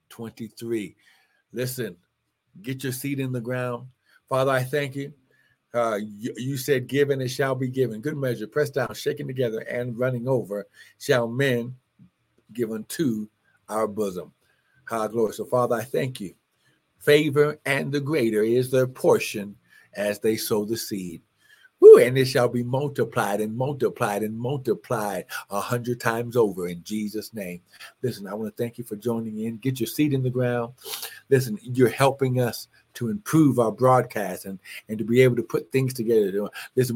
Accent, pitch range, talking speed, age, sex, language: American, 115-130 Hz, 170 wpm, 60-79, male, English